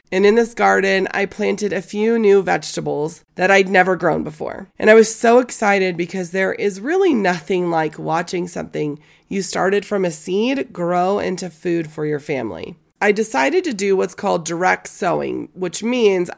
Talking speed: 180 wpm